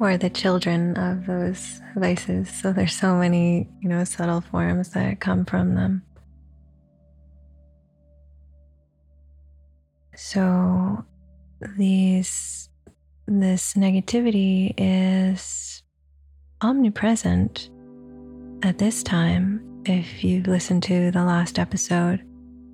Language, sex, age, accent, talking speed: English, female, 20-39, American, 90 wpm